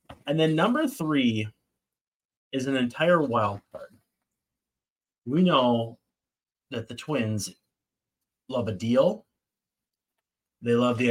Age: 30-49